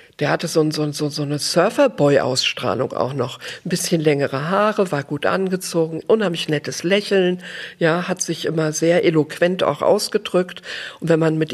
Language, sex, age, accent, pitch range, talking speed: German, female, 50-69, German, 155-185 Hz, 165 wpm